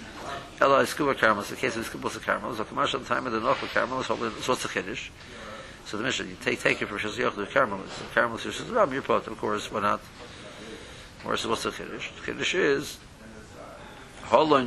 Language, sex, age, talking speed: English, male, 50-69, 80 wpm